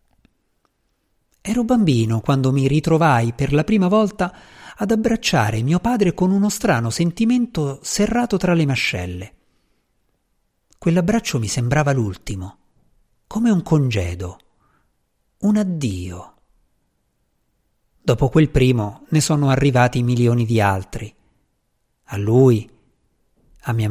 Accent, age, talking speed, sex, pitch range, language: native, 50-69, 110 wpm, male, 115-180 Hz, Italian